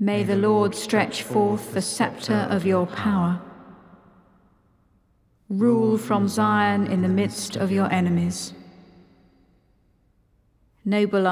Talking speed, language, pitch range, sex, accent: 105 wpm, English, 180-205 Hz, female, British